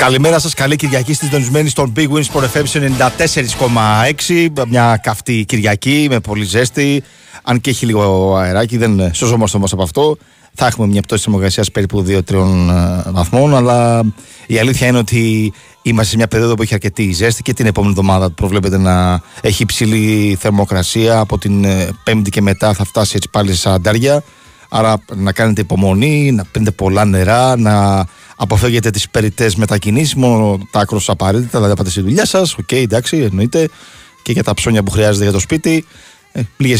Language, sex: Greek, male